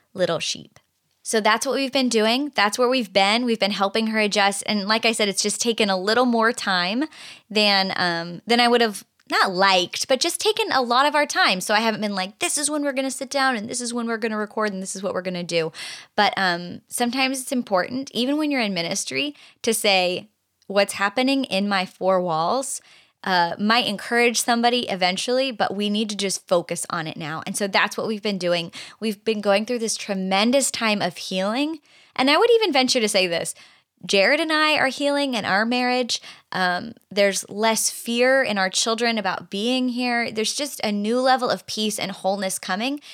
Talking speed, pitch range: 220 wpm, 195-250 Hz